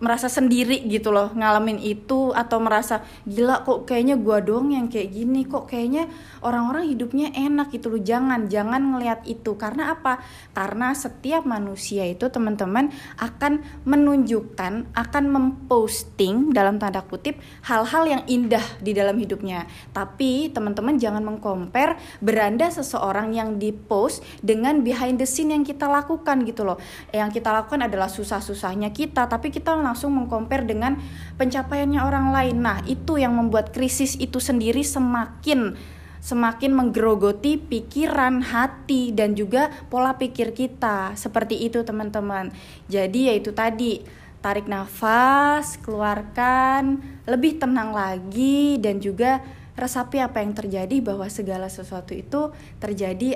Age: 20-39